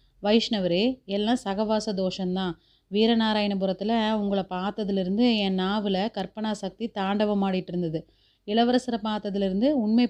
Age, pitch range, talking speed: 30-49, 185-220 Hz, 90 wpm